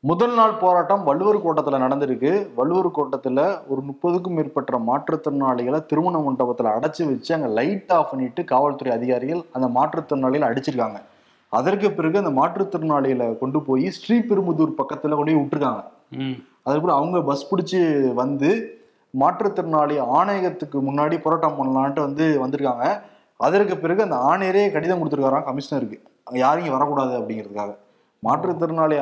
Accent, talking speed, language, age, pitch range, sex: native, 120 wpm, Tamil, 30-49, 135-175 Hz, male